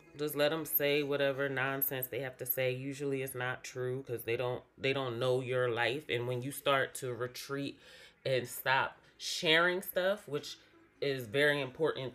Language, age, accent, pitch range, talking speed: English, 30-49, American, 125-150 Hz, 180 wpm